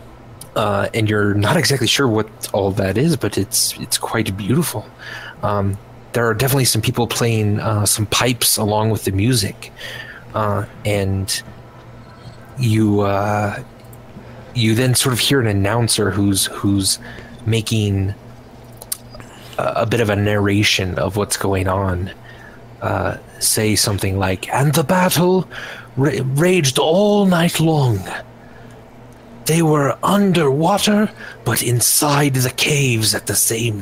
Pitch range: 105-125 Hz